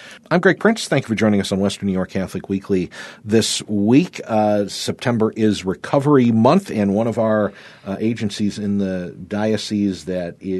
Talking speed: 180 wpm